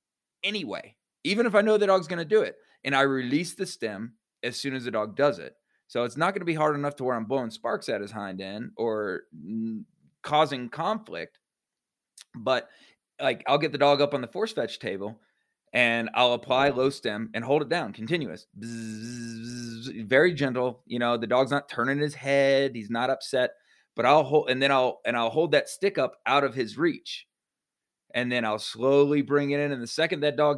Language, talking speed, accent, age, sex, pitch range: English, 210 wpm, American, 20-39, male, 125-200 Hz